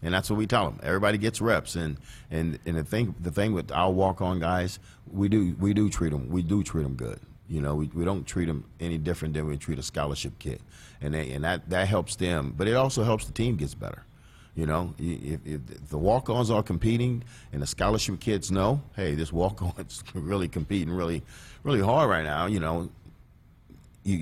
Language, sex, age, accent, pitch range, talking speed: English, male, 40-59, American, 75-100 Hz, 220 wpm